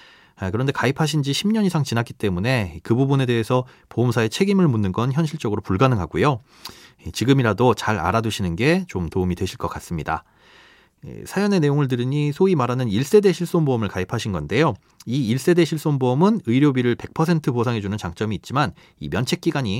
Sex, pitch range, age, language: male, 105-165 Hz, 30-49, Korean